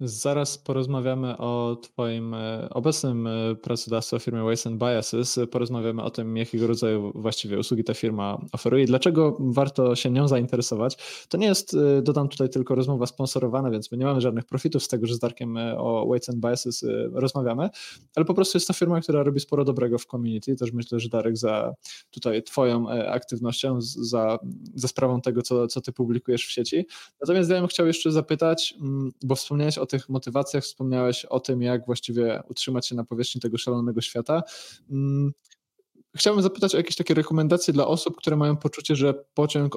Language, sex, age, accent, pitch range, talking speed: Polish, male, 20-39, native, 120-140 Hz, 175 wpm